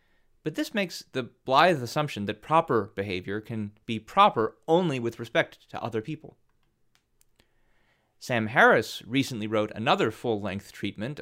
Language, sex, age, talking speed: English, male, 30-49, 135 wpm